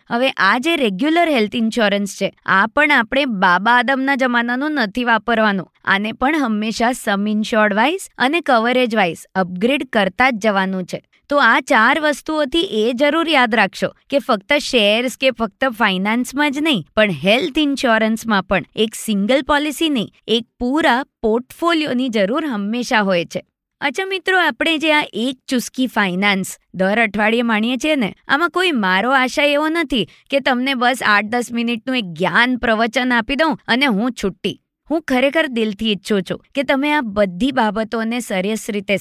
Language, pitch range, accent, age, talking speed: Gujarati, 210-275 Hz, native, 20-39, 160 wpm